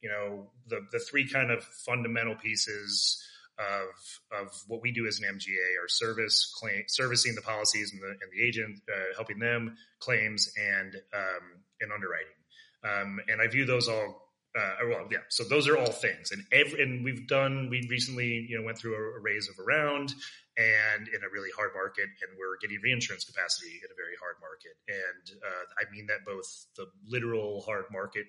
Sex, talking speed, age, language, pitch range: male, 195 wpm, 30-49, English, 110-135 Hz